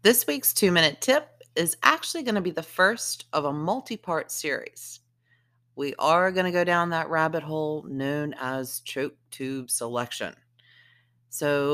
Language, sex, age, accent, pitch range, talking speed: English, female, 40-59, American, 130-165 Hz, 150 wpm